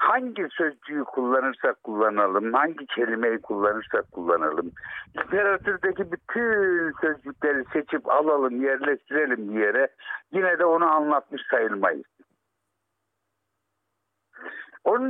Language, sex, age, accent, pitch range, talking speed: Turkish, male, 60-79, native, 125-205 Hz, 85 wpm